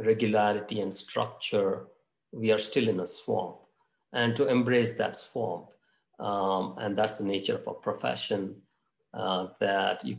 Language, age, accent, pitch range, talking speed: English, 50-69, Indian, 105-125 Hz, 145 wpm